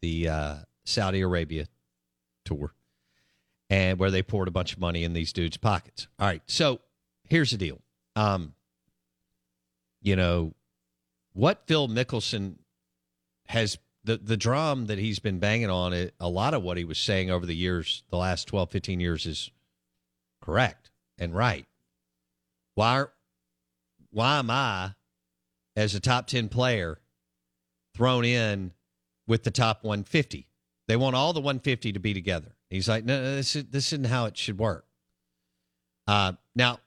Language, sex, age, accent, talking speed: English, male, 50-69, American, 155 wpm